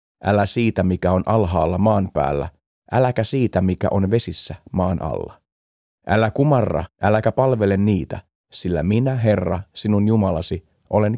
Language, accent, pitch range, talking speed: Finnish, native, 85-115 Hz, 135 wpm